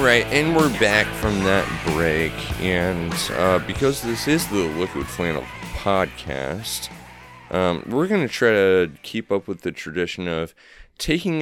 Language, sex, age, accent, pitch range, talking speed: English, male, 30-49, American, 85-110 Hz, 145 wpm